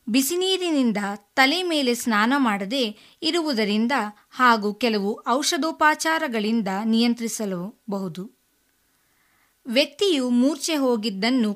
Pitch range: 210-285 Hz